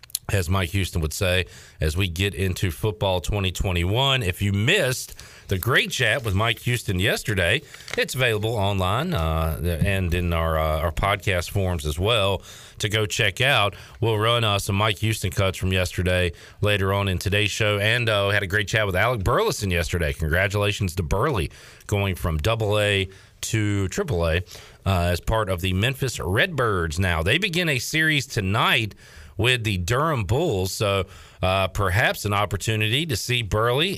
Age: 40-59